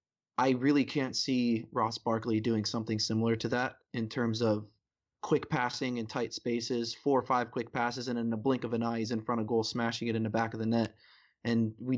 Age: 30-49